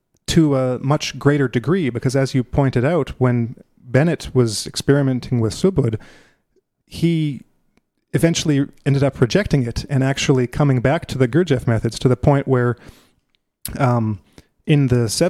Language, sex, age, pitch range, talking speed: English, male, 30-49, 115-140 Hz, 145 wpm